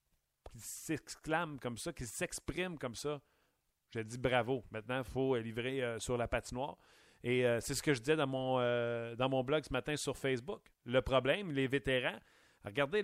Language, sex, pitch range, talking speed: French, male, 125-150 Hz, 185 wpm